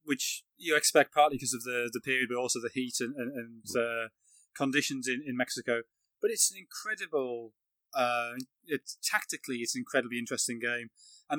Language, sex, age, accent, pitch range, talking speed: English, male, 20-39, British, 120-150 Hz, 180 wpm